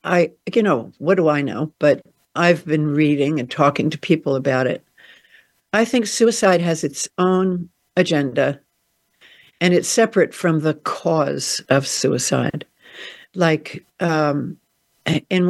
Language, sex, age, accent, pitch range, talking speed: English, female, 60-79, American, 150-185 Hz, 135 wpm